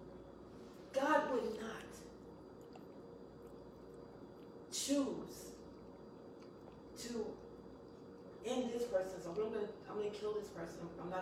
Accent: American